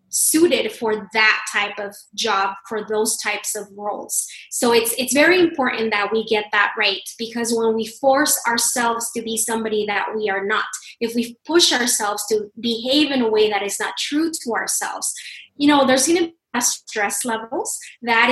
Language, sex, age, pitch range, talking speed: English, female, 20-39, 215-270 Hz, 185 wpm